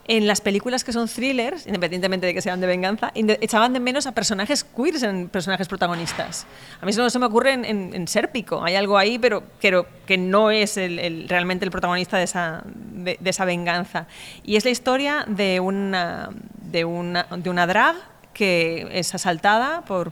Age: 30-49